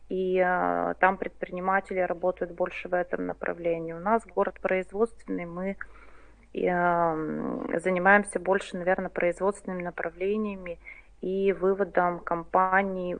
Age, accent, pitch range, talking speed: 20-39, native, 180-215 Hz, 105 wpm